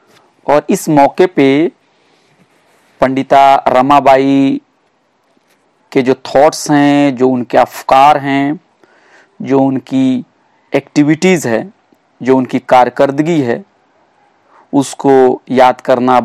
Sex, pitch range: male, 130-150 Hz